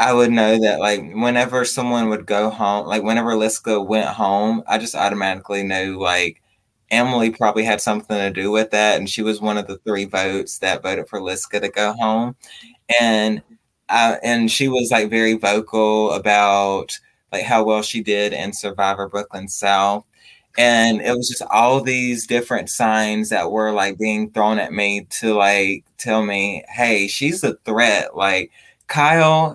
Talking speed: 175 wpm